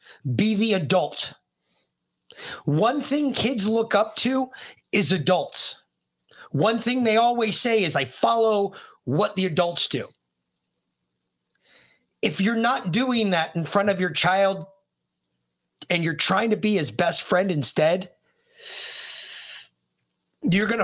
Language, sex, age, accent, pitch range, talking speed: English, male, 30-49, American, 140-210 Hz, 125 wpm